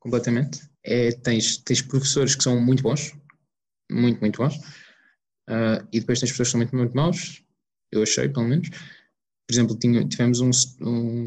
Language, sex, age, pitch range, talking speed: Portuguese, male, 20-39, 105-125 Hz, 170 wpm